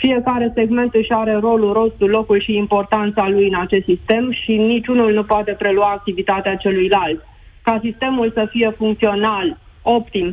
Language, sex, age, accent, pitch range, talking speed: Romanian, female, 20-39, native, 200-230 Hz, 150 wpm